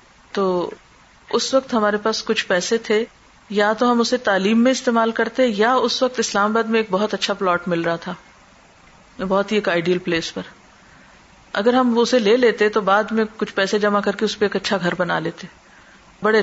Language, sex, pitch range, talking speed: Urdu, female, 195-240 Hz, 210 wpm